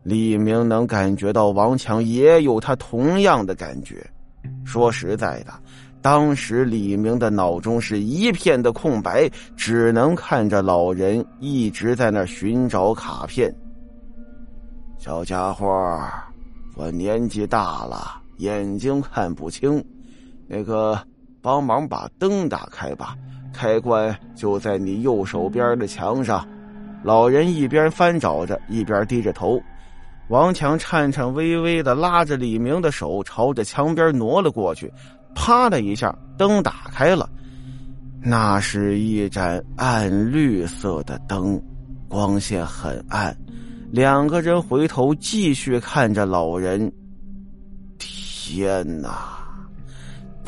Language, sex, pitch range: Chinese, male, 100-150 Hz